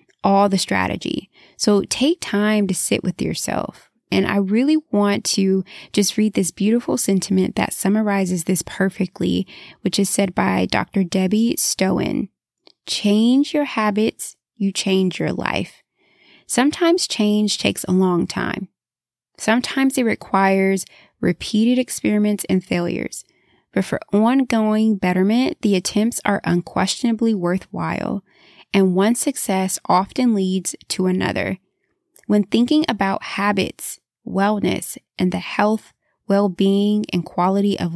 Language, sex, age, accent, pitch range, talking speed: English, female, 20-39, American, 190-225 Hz, 125 wpm